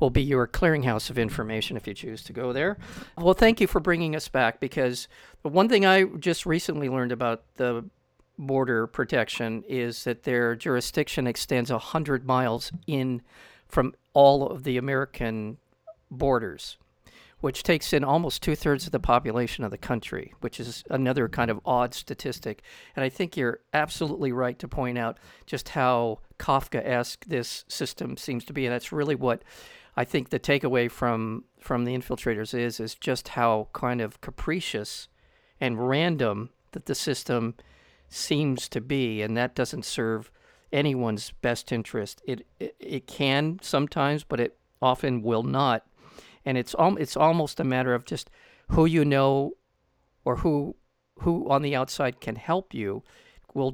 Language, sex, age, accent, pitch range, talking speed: English, male, 50-69, American, 120-145 Hz, 165 wpm